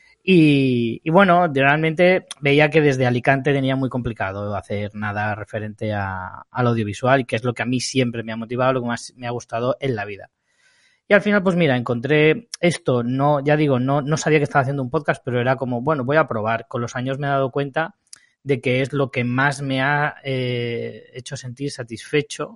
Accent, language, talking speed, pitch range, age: Spanish, Spanish, 215 wpm, 120-155 Hz, 20-39